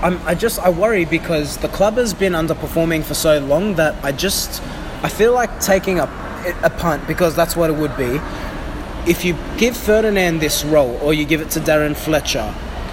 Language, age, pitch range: English, 20-39, 145-175 Hz